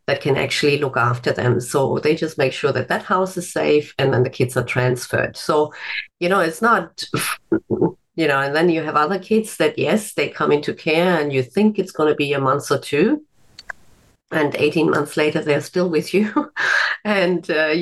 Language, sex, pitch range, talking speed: English, female, 125-160 Hz, 205 wpm